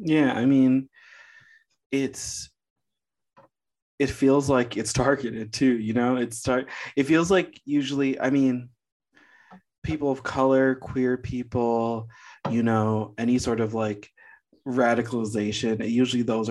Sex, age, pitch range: male, 20-39, 110-135 Hz